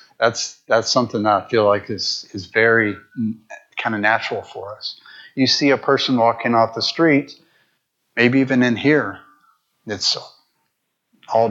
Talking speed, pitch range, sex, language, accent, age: 155 wpm, 110-130 Hz, male, English, American, 30-49